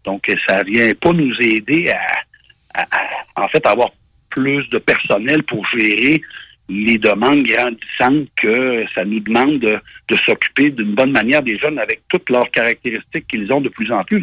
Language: French